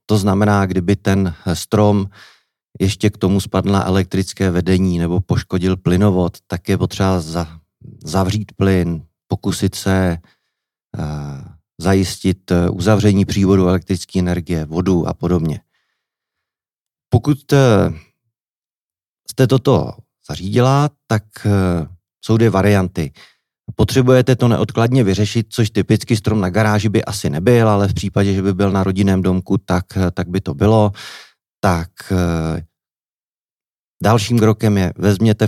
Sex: male